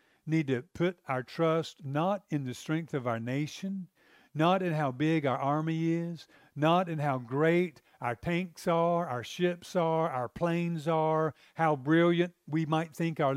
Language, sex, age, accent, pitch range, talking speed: English, male, 50-69, American, 150-180 Hz, 170 wpm